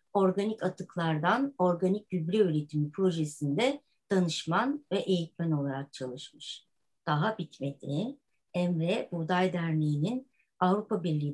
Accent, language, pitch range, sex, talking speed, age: native, Turkish, 160-195 Hz, male, 95 wpm, 60-79